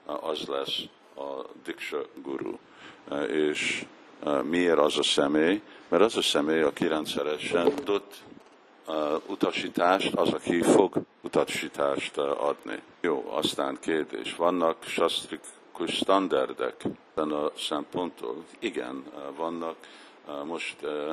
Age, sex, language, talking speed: 60-79, male, Hungarian, 95 wpm